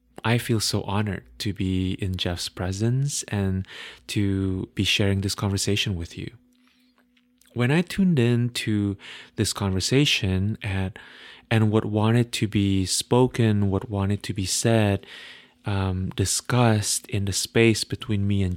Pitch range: 95-115 Hz